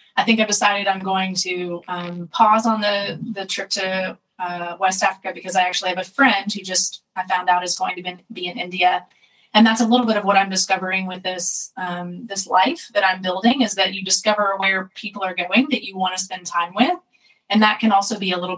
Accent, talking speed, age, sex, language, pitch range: American, 240 wpm, 20-39, female, English, 180-210 Hz